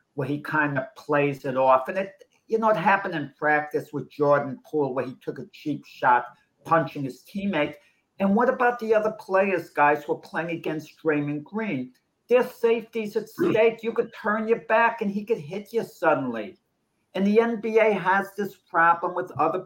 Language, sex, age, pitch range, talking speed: English, male, 60-79, 145-195 Hz, 190 wpm